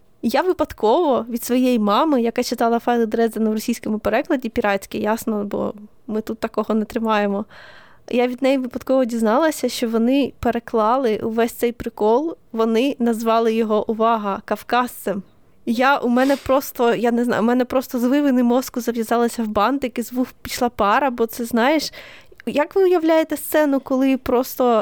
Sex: female